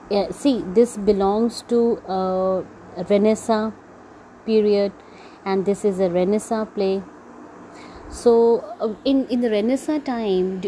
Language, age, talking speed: English, 30-49, 120 wpm